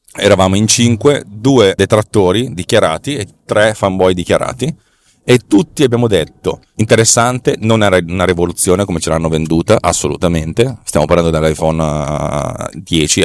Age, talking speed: 30-49, 125 wpm